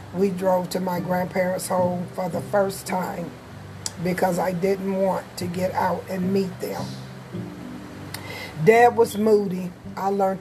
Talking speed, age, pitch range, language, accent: 145 wpm, 40-59, 175-195 Hz, English, American